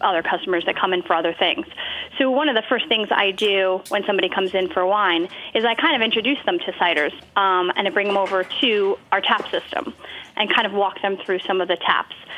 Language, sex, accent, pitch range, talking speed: English, female, American, 195-230 Hz, 240 wpm